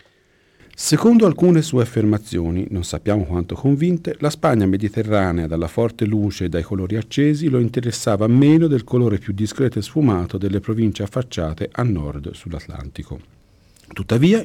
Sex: male